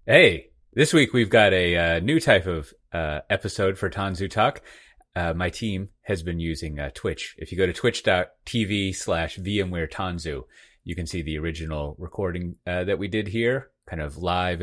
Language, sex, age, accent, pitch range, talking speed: English, male, 30-49, American, 80-105 Hz, 185 wpm